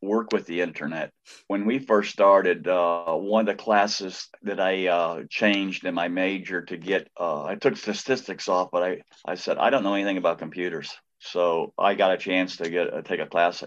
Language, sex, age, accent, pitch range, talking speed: English, male, 50-69, American, 85-105 Hz, 210 wpm